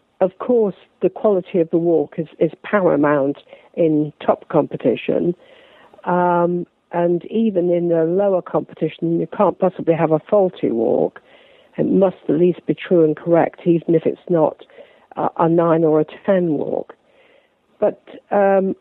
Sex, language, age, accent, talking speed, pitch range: female, English, 50-69, British, 155 wpm, 170-220 Hz